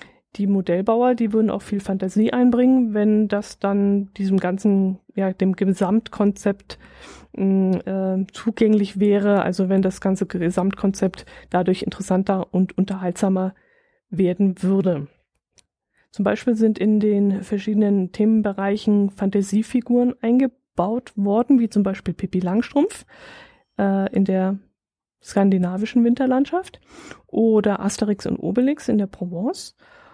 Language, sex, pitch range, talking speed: German, female, 195-230 Hz, 115 wpm